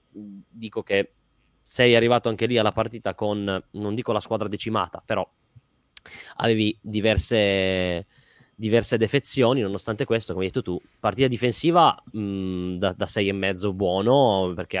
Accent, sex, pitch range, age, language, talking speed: native, male, 105-125 Hz, 20-39, Italian, 140 wpm